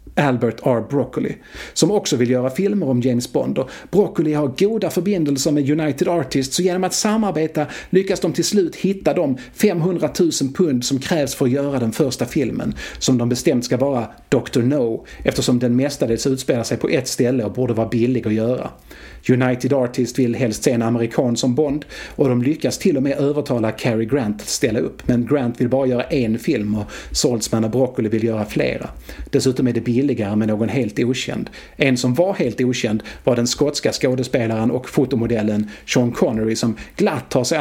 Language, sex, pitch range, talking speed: Swedish, male, 120-160 Hz, 190 wpm